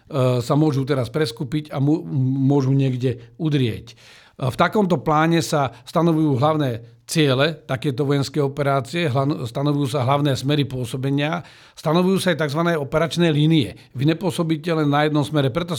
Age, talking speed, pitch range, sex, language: 50-69, 135 wpm, 130-160 Hz, male, Slovak